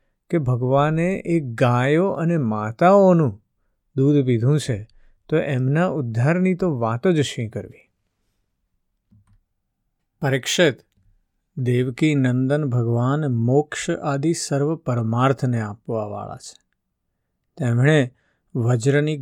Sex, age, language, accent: male, 50-69, Gujarati, native